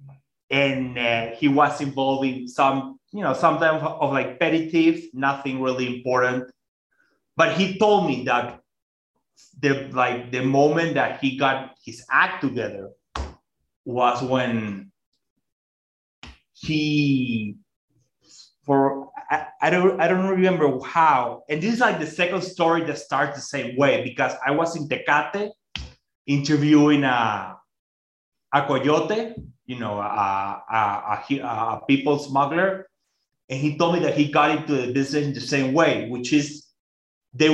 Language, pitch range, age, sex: English, 130-155 Hz, 30-49, male